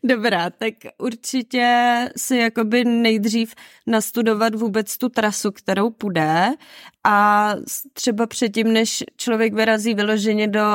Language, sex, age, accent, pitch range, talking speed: Czech, female, 20-39, native, 185-220 Hz, 110 wpm